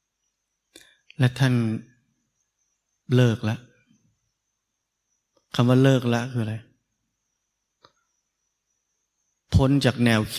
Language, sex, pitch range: Thai, male, 105-130 Hz